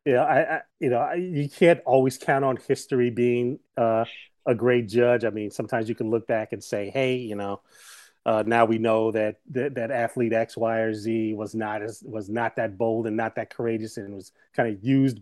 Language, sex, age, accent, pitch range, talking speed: English, male, 30-49, American, 115-135 Hz, 225 wpm